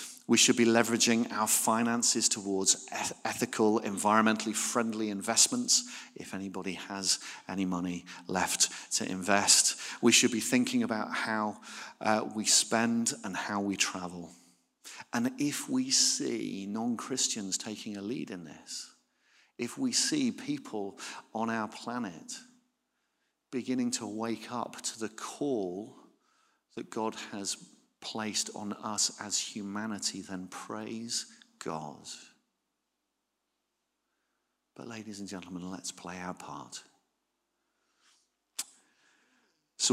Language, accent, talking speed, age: English, British, 115 wpm, 40-59